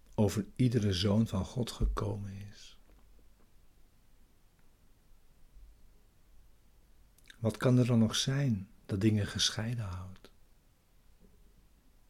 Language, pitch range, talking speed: Dutch, 85-110 Hz, 85 wpm